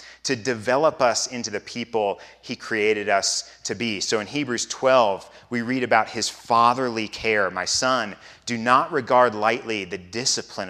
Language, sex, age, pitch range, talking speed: English, male, 30-49, 110-145 Hz, 165 wpm